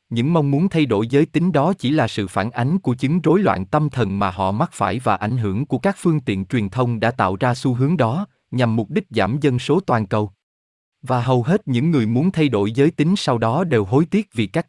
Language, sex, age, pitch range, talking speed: Vietnamese, male, 20-39, 105-150 Hz, 255 wpm